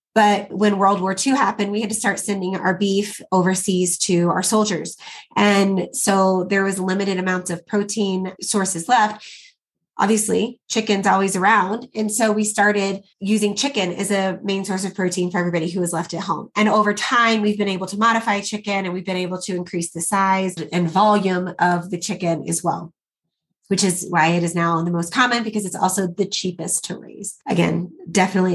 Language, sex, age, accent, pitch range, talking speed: English, female, 20-39, American, 180-210 Hz, 195 wpm